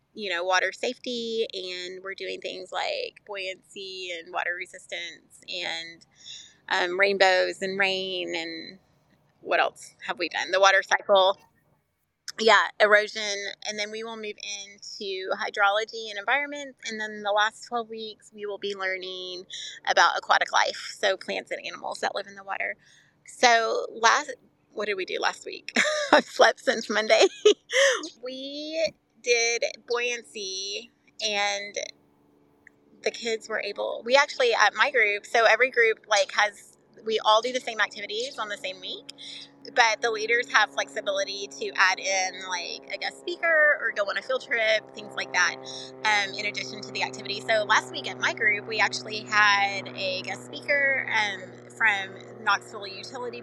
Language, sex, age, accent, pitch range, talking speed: English, female, 30-49, American, 195-270 Hz, 160 wpm